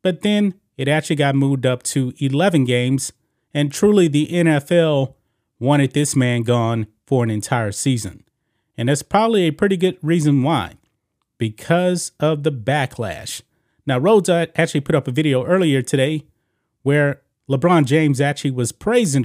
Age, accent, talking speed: 30-49, American, 155 wpm